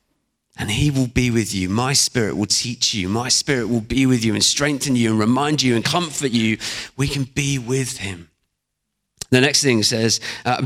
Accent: British